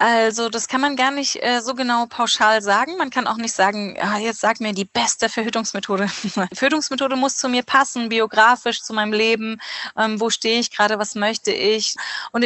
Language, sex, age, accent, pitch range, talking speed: German, female, 20-39, German, 210-240 Hz, 200 wpm